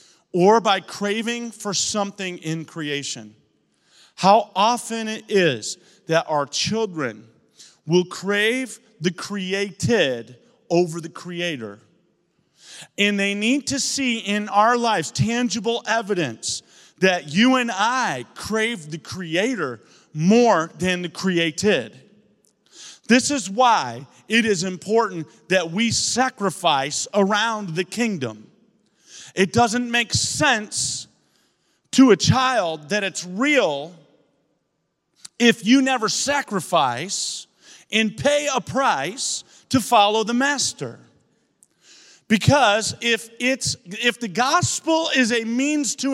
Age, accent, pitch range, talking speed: 40-59, American, 180-250 Hz, 110 wpm